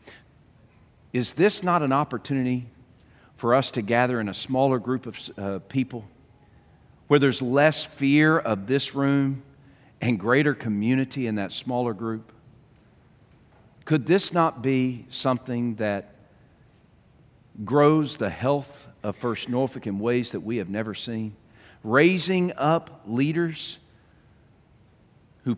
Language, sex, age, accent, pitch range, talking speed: English, male, 50-69, American, 115-140 Hz, 125 wpm